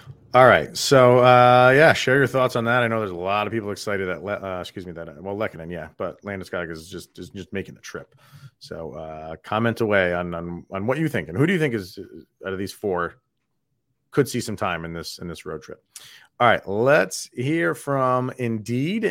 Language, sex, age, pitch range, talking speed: English, male, 30-49, 105-140 Hz, 230 wpm